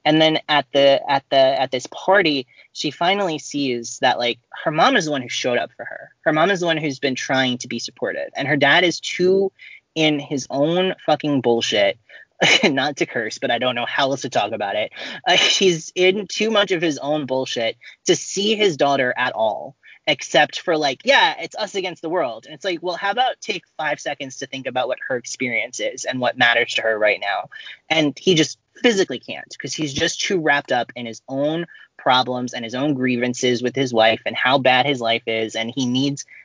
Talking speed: 225 wpm